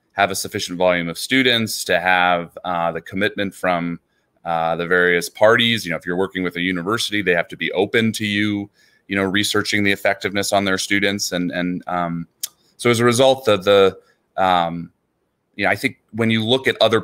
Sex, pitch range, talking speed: male, 85-105 Hz, 210 wpm